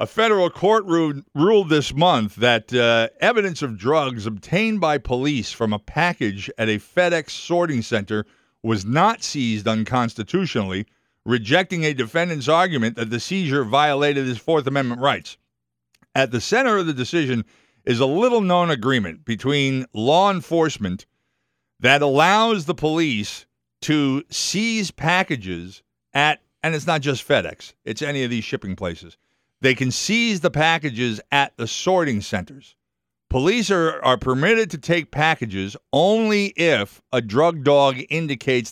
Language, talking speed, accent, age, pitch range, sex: English, 145 wpm, American, 50-69, 115-165 Hz, male